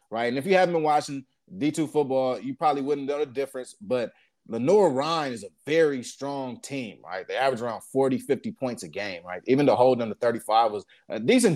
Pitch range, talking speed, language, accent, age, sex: 130-175 Hz, 220 wpm, English, American, 30-49, male